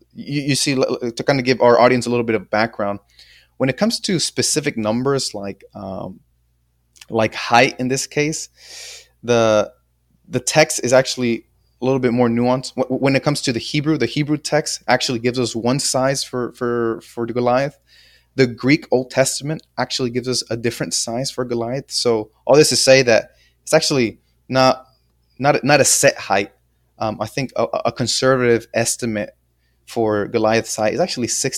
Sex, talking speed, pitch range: male, 180 wpm, 105-130 Hz